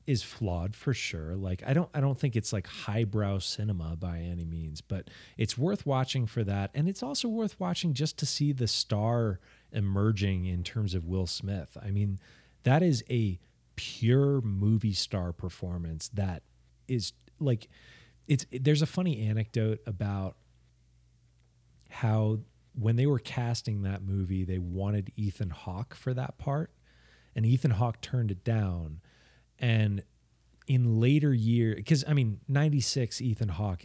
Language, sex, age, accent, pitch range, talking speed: English, male, 30-49, American, 95-130 Hz, 155 wpm